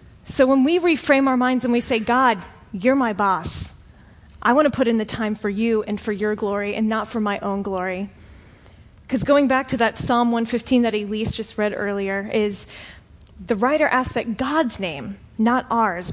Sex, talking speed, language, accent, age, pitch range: female, 195 wpm, English, American, 30-49, 210-265 Hz